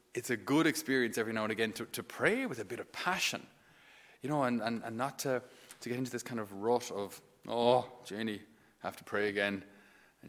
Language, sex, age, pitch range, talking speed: English, male, 30-49, 105-130 Hz, 220 wpm